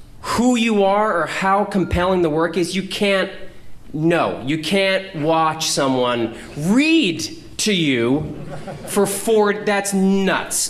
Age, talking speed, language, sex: 30-49, 130 wpm, English, male